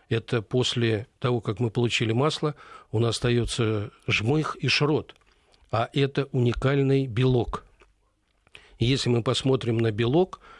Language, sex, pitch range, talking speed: Russian, male, 115-135 Hz, 130 wpm